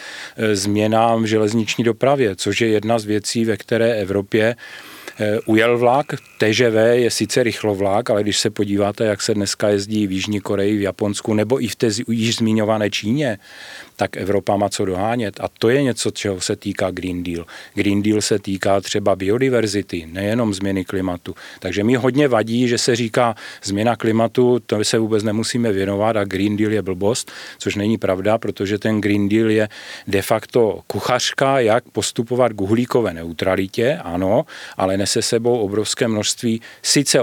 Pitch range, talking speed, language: 100-115 Hz, 165 wpm, Czech